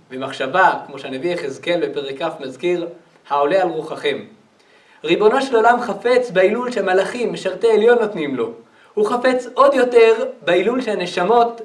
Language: Hebrew